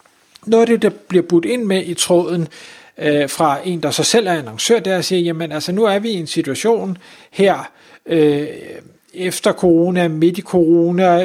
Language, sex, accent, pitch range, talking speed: Danish, male, native, 160-195 Hz, 190 wpm